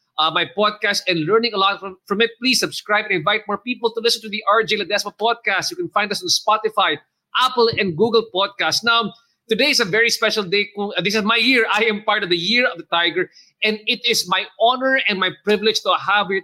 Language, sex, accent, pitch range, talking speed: English, male, Filipino, 180-220 Hz, 235 wpm